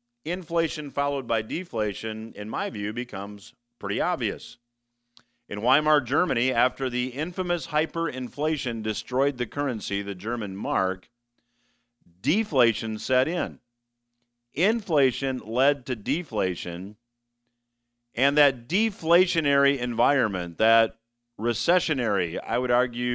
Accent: American